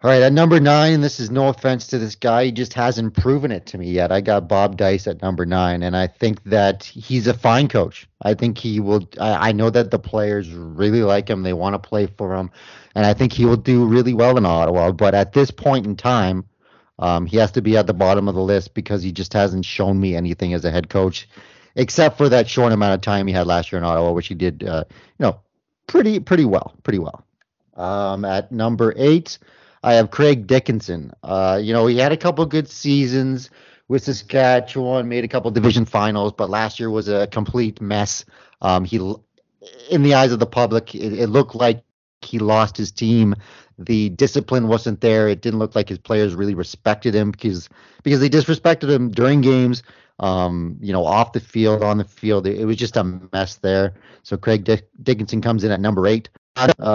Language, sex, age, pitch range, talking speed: English, male, 30-49, 100-125 Hz, 220 wpm